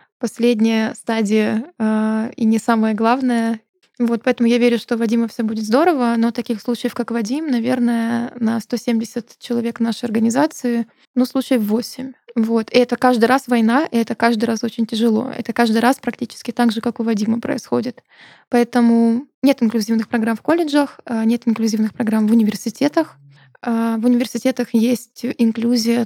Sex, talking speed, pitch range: female, 155 wpm, 230-255 Hz